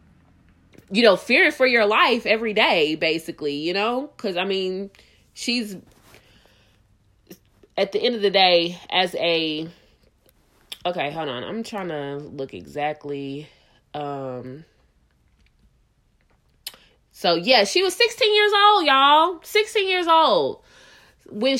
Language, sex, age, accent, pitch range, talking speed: English, female, 20-39, American, 160-225 Hz, 120 wpm